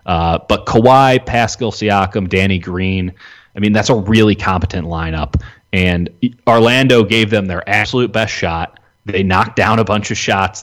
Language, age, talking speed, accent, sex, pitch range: English, 30-49, 165 wpm, American, male, 90-110 Hz